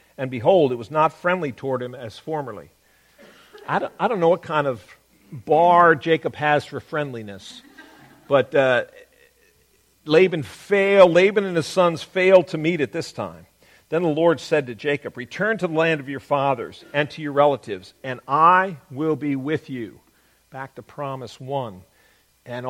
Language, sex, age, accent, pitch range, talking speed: English, male, 50-69, American, 135-175 Hz, 165 wpm